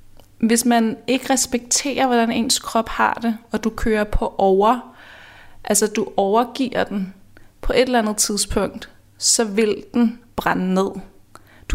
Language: Danish